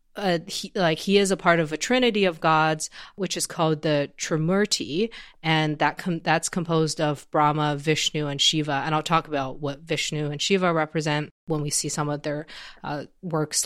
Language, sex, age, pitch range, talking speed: English, female, 30-49, 150-180 Hz, 185 wpm